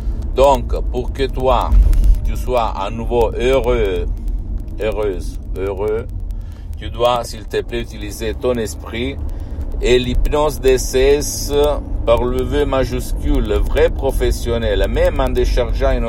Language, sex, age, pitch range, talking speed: Italian, male, 60-79, 70-115 Hz, 125 wpm